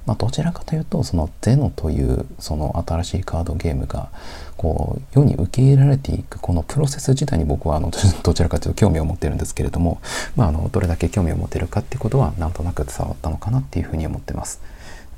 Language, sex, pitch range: Japanese, male, 80-110 Hz